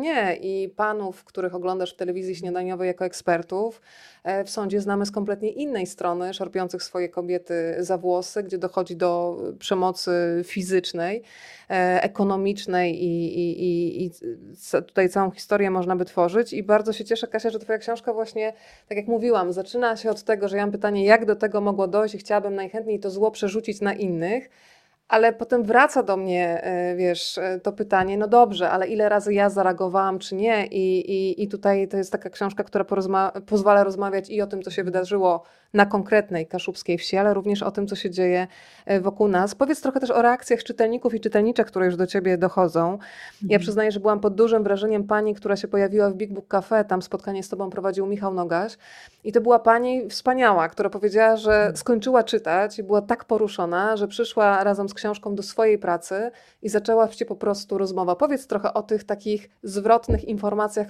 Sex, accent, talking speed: female, native, 185 wpm